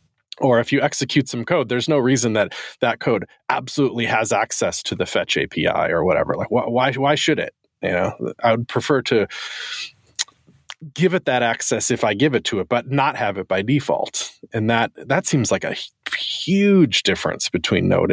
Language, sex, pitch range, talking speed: English, male, 100-140 Hz, 190 wpm